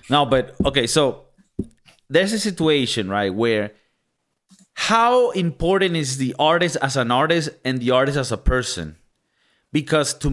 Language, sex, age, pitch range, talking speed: English, male, 30-49, 125-185 Hz, 145 wpm